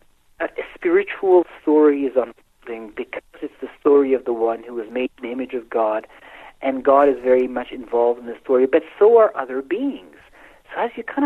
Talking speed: 210 wpm